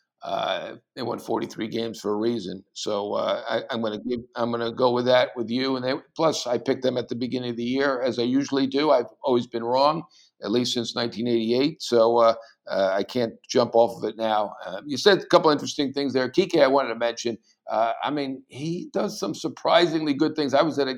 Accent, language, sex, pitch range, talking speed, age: American, English, male, 115-145 Hz, 235 wpm, 50-69